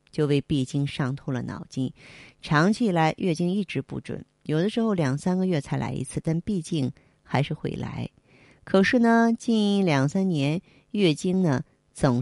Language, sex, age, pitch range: Chinese, female, 20-39, 135-175 Hz